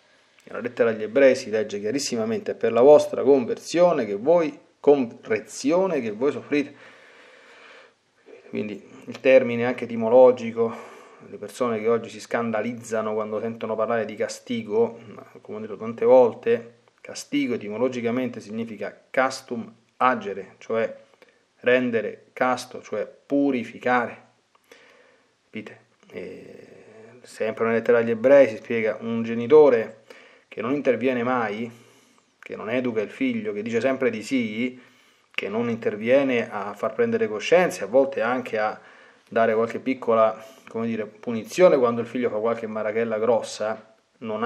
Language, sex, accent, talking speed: Italian, male, native, 135 wpm